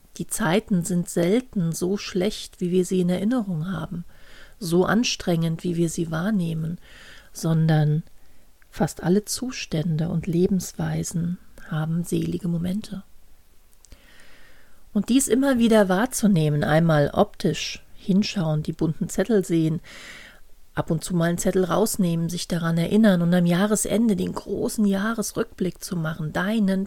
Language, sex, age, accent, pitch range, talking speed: German, female, 40-59, German, 170-210 Hz, 130 wpm